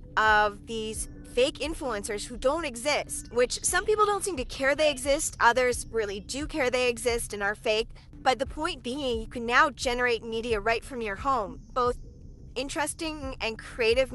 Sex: female